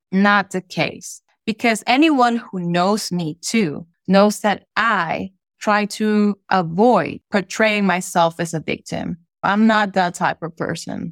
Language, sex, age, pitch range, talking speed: English, female, 20-39, 180-235 Hz, 140 wpm